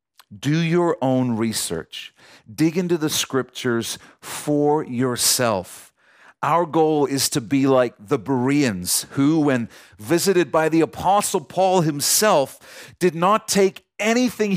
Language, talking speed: English, 125 wpm